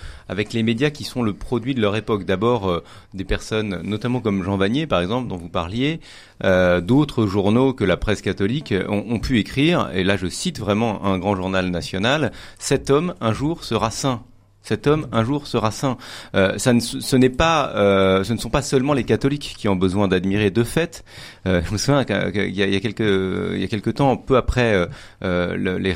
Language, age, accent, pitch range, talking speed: French, 30-49, French, 95-130 Hz, 215 wpm